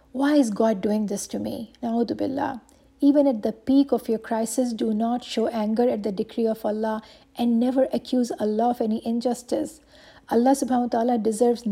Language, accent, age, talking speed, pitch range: English, Indian, 50-69, 185 wpm, 220-255 Hz